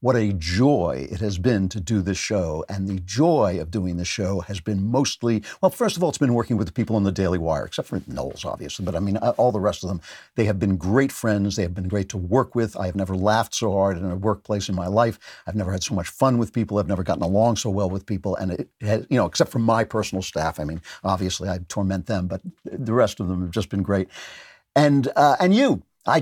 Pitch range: 100-120 Hz